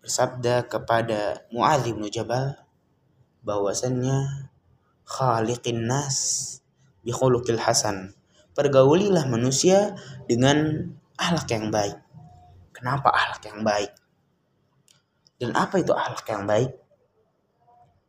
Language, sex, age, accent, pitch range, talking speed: Indonesian, male, 20-39, native, 115-140 Hz, 85 wpm